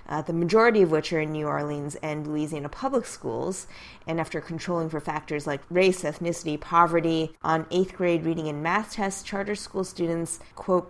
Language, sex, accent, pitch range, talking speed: English, female, American, 150-180 Hz, 180 wpm